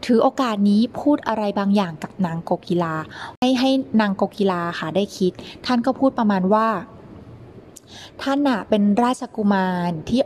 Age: 20-39